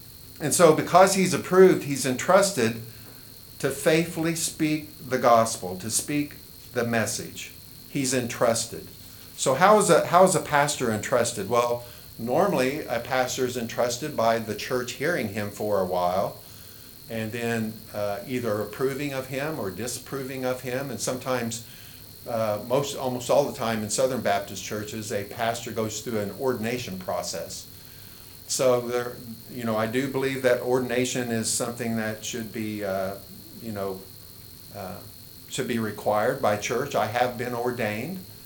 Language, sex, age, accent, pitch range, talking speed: English, male, 50-69, American, 110-135 Hz, 155 wpm